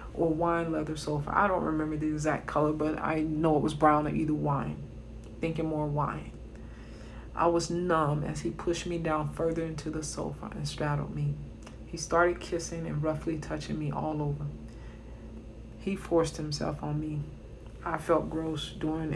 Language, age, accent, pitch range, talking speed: English, 40-59, American, 115-160 Hz, 170 wpm